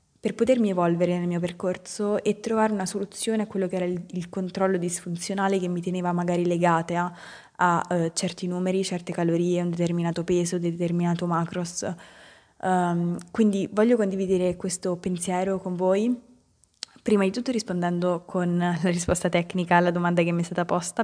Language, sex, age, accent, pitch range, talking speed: Italian, female, 20-39, native, 175-195 Hz, 170 wpm